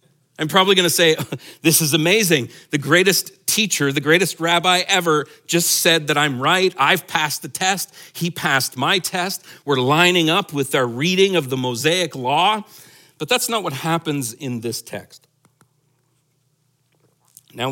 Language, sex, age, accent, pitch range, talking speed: English, male, 50-69, American, 120-165 Hz, 160 wpm